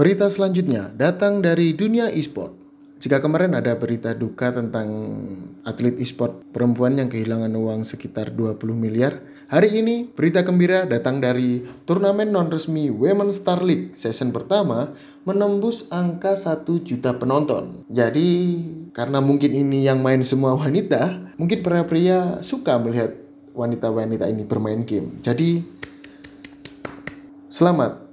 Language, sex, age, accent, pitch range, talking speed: Indonesian, male, 20-39, native, 120-175 Hz, 125 wpm